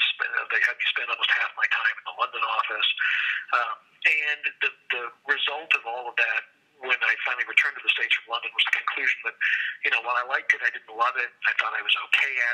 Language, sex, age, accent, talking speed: English, male, 50-69, American, 240 wpm